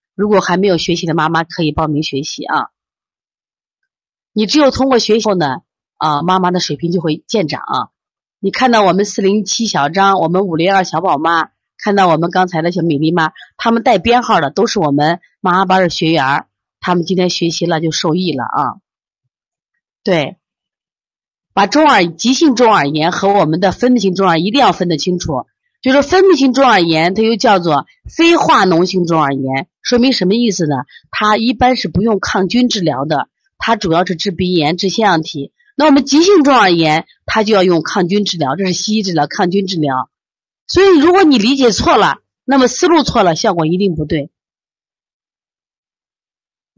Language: Chinese